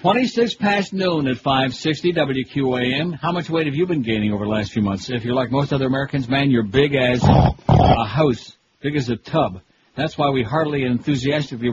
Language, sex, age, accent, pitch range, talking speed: English, male, 60-79, American, 125-150 Hz, 205 wpm